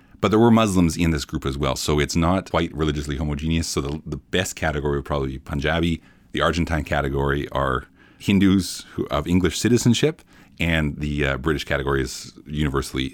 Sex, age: male, 40-59